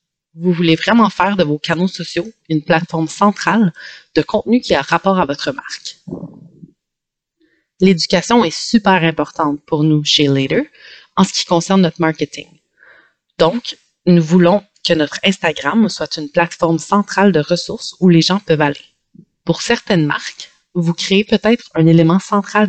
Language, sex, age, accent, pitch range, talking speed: English, female, 30-49, Canadian, 165-210 Hz, 155 wpm